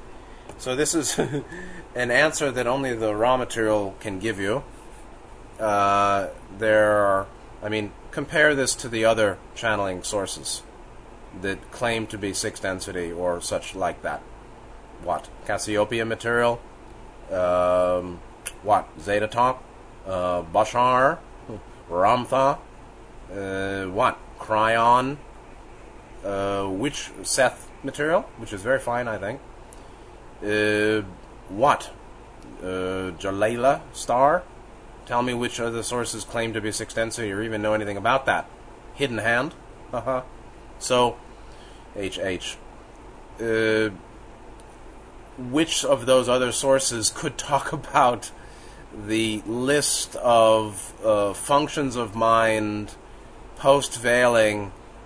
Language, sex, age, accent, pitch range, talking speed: English, male, 30-49, American, 100-125 Hz, 110 wpm